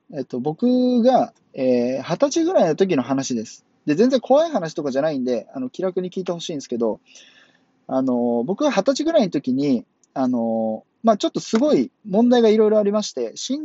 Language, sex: Japanese, male